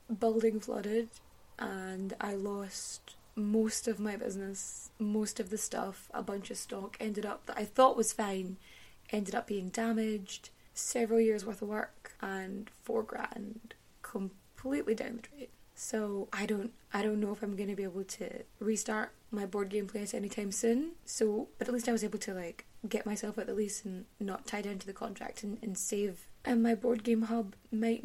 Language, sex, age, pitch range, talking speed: English, female, 20-39, 205-235 Hz, 195 wpm